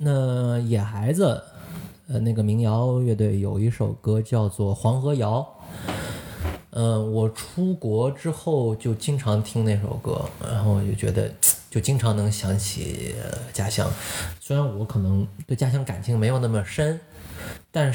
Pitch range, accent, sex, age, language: 105-130 Hz, native, male, 20-39, Chinese